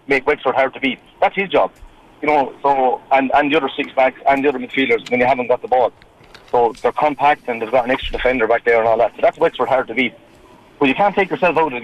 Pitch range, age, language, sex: 125-145 Hz, 30-49, English, male